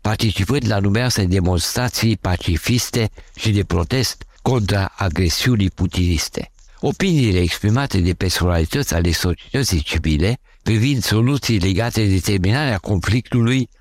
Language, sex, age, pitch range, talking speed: Romanian, male, 60-79, 90-125 Hz, 105 wpm